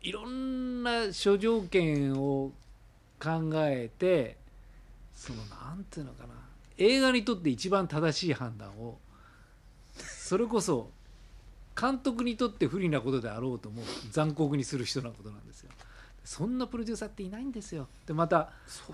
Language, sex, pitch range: Japanese, male, 125-195 Hz